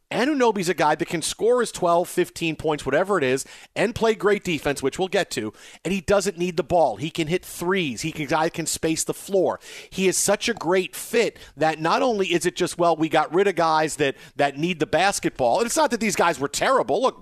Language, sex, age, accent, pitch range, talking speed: English, male, 40-59, American, 150-190 Hz, 245 wpm